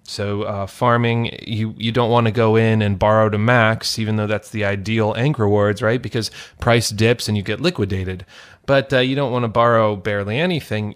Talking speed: 195 wpm